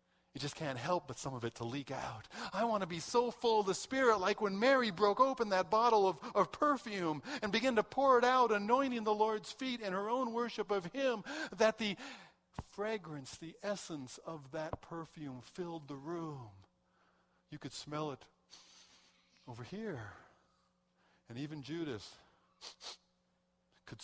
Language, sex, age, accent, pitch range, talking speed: English, male, 50-69, American, 135-225 Hz, 165 wpm